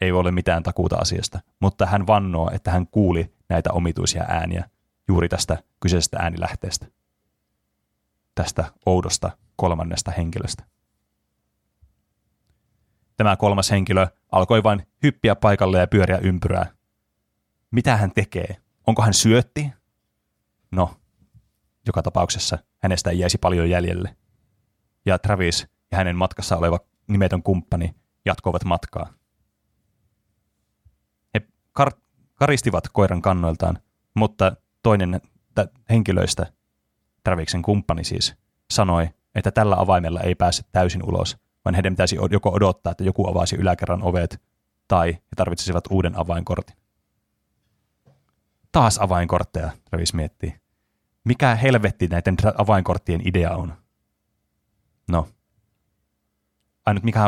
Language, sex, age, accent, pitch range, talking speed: Finnish, male, 30-49, native, 85-105 Hz, 105 wpm